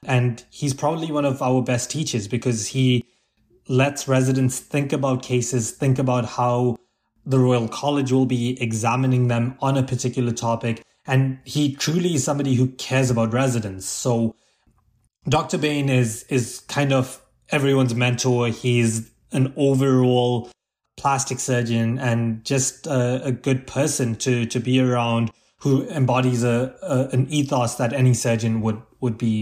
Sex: male